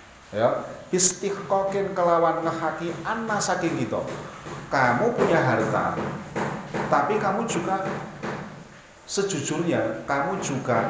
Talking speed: 90 wpm